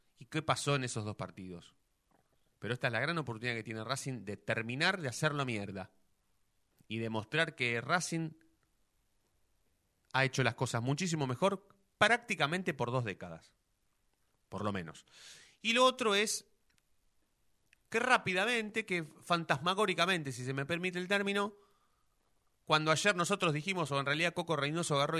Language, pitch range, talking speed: Spanish, 115-180 Hz, 150 wpm